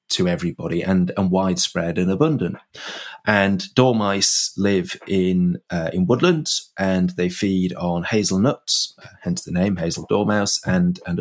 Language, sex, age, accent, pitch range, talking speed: English, male, 30-49, British, 90-105 Hz, 140 wpm